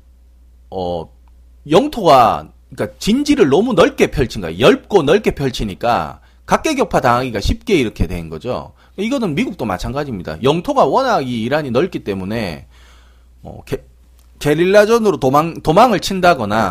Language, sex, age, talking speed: English, male, 30-49, 110 wpm